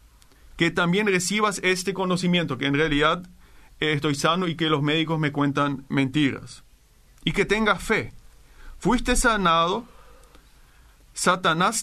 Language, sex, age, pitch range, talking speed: Spanish, male, 40-59, 145-185 Hz, 125 wpm